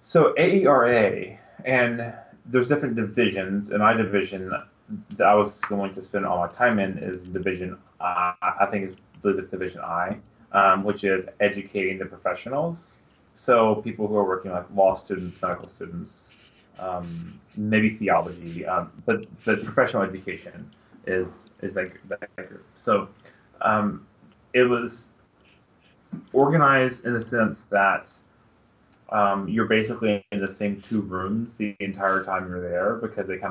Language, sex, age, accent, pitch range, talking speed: English, male, 30-49, American, 95-115 Hz, 150 wpm